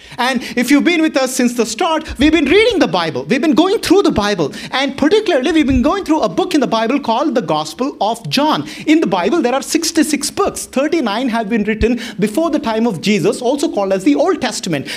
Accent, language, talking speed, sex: Indian, English, 235 wpm, male